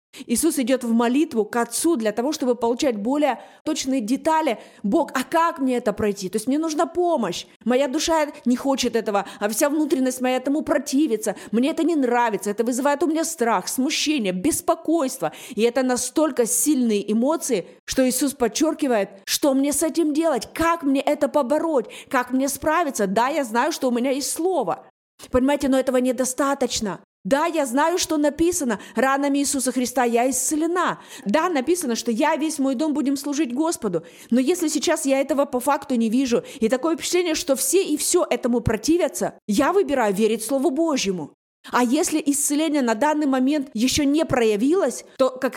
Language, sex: Russian, female